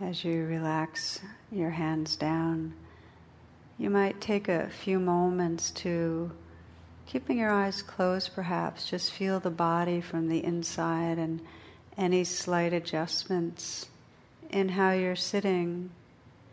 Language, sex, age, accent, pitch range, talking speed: English, female, 60-79, American, 160-185 Hz, 120 wpm